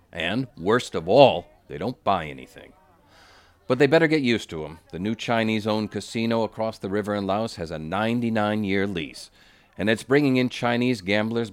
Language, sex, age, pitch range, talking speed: English, male, 40-59, 95-125 Hz, 175 wpm